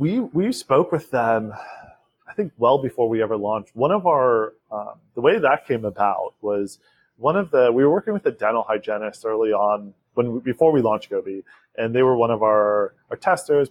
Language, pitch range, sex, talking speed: English, 105-125 Hz, male, 210 wpm